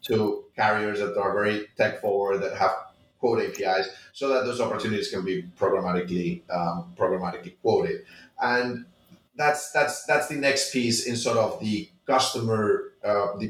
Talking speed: 155 wpm